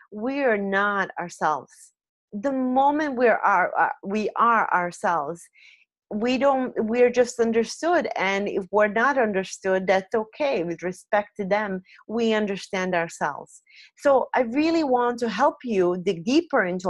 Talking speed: 145 wpm